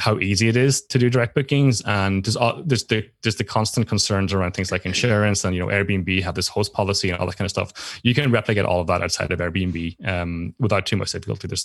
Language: English